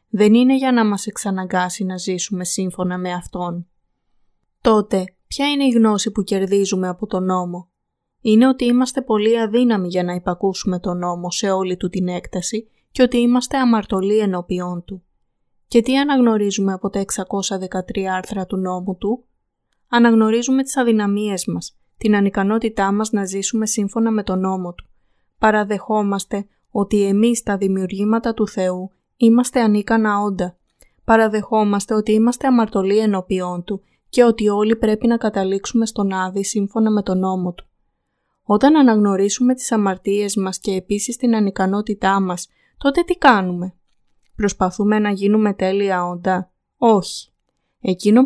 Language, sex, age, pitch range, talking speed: Greek, female, 20-39, 190-225 Hz, 145 wpm